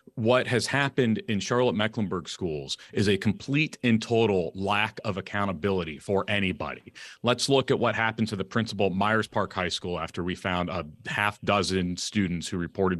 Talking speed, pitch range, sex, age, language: 175 wpm, 95-120 Hz, male, 30-49, English